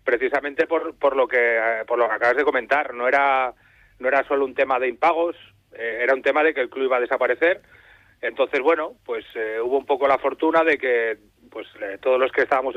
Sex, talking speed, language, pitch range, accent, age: male, 225 wpm, Spanish, 120-160 Hz, Spanish, 30-49